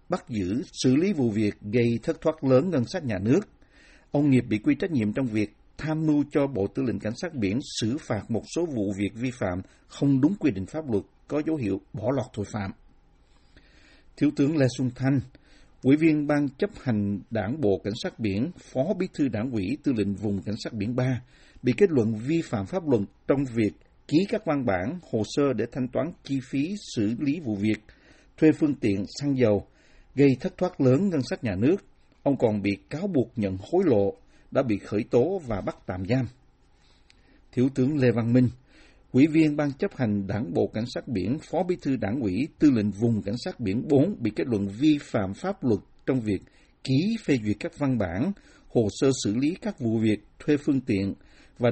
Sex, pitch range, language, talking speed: male, 105-145 Hz, Vietnamese, 215 wpm